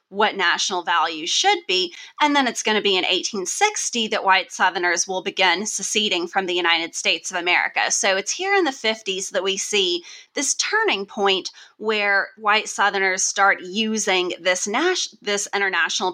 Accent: American